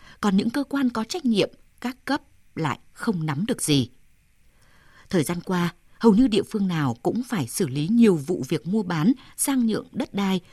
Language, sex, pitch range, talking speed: Vietnamese, female, 170-240 Hz, 200 wpm